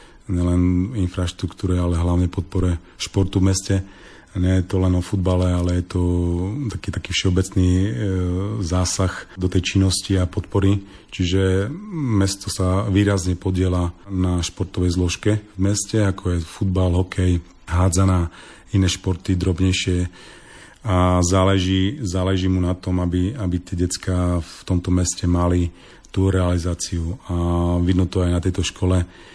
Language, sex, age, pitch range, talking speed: Slovak, male, 30-49, 90-95 Hz, 140 wpm